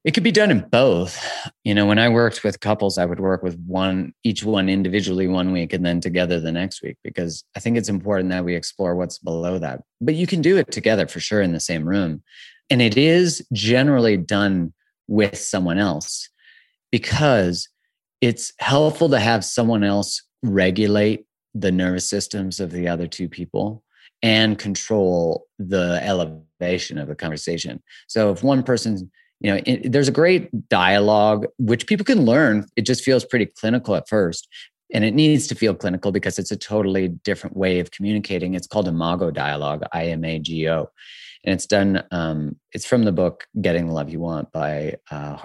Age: 30-49